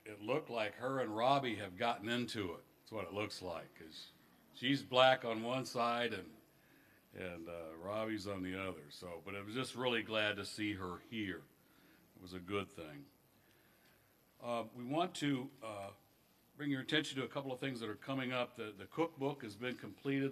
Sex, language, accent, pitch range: male, English, American, 100-130 Hz